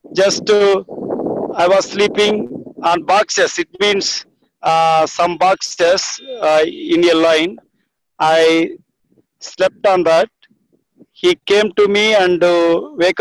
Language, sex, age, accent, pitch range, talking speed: English, male, 50-69, Indian, 180-245 Hz, 125 wpm